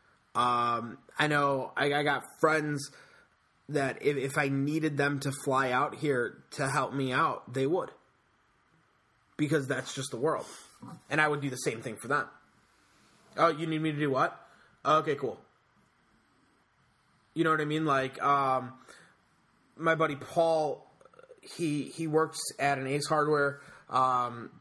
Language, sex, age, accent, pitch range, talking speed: English, male, 20-39, American, 135-155 Hz, 155 wpm